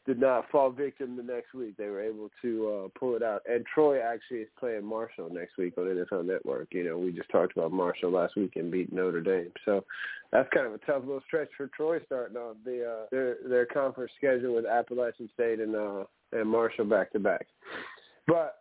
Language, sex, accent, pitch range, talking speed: English, male, American, 105-135 Hz, 215 wpm